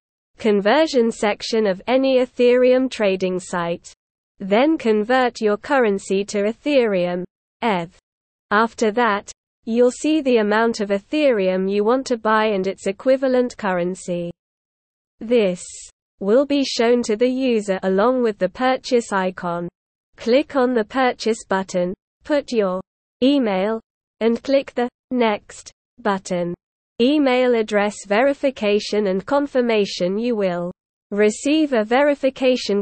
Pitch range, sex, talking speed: 195-250 Hz, female, 120 wpm